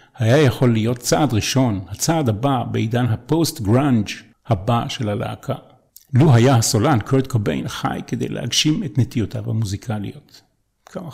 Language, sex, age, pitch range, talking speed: Hebrew, male, 50-69, 110-140 Hz, 135 wpm